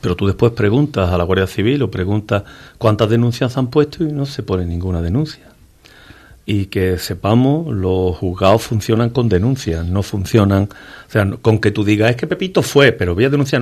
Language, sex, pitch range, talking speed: Spanish, male, 100-140 Hz, 195 wpm